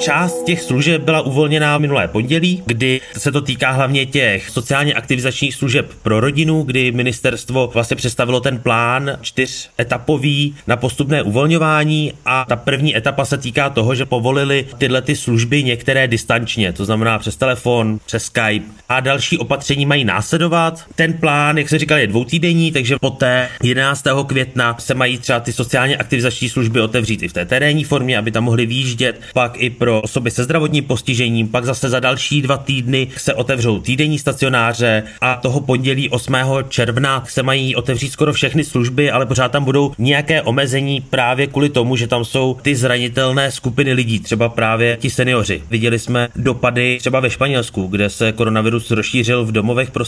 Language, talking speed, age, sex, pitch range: Czech, 170 wpm, 30-49, male, 120-140 Hz